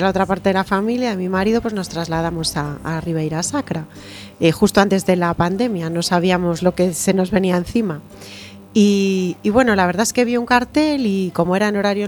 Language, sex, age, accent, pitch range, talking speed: Spanish, female, 30-49, Spanish, 160-200 Hz, 225 wpm